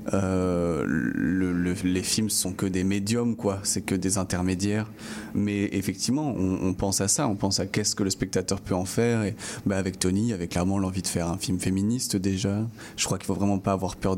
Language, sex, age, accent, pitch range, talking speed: French, male, 30-49, French, 95-105 Hz, 225 wpm